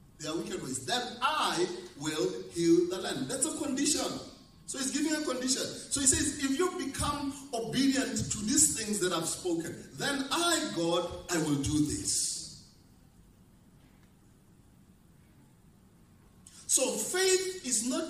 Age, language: 40-59, English